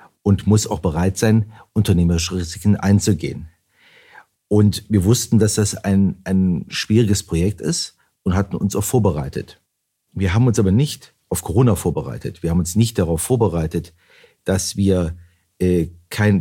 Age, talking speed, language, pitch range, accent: 40-59, 150 wpm, German, 90-105 Hz, German